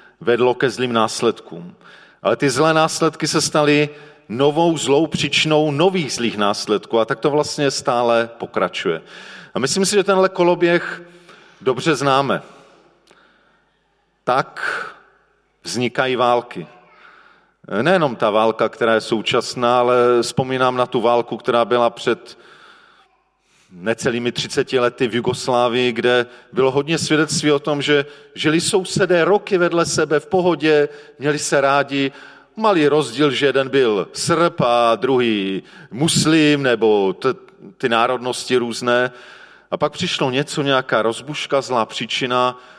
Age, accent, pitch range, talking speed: 40-59, native, 120-160 Hz, 125 wpm